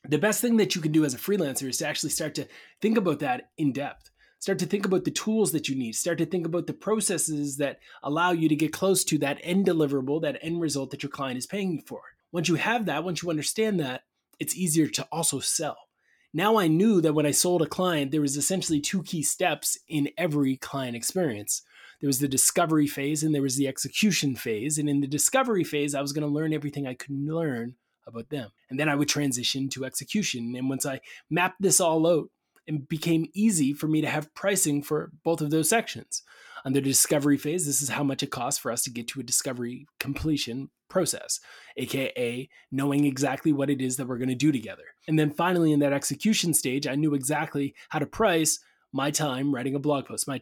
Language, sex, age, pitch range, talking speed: English, male, 20-39, 140-170 Hz, 230 wpm